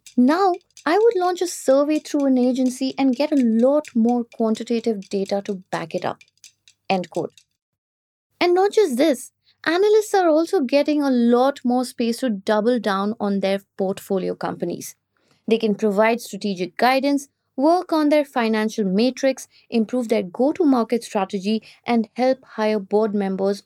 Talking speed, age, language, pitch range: 155 wpm, 20-39, English, 210-275 Hz